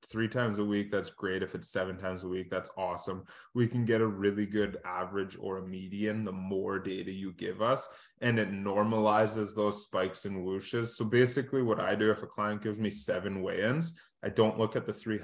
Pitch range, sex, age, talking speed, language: 95-115 Hz, male, 20-39, 215 wpm, English